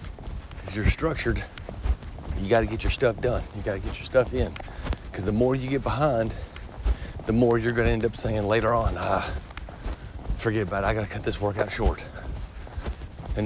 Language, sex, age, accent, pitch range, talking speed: English, male, 40-59, American, 85-120 Hz, 195 wpm